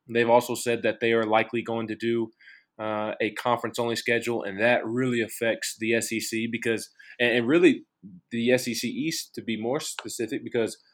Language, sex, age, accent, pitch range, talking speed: English, male, 20-39, American, 110-125 Hz, 170 wpm